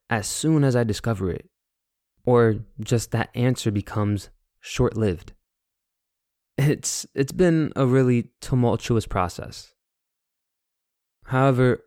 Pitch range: 100-125 Hz